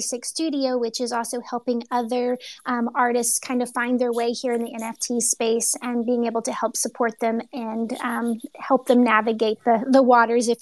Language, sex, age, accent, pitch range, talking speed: English, female, 30-49, American, 235-255 Hz, 190 wpm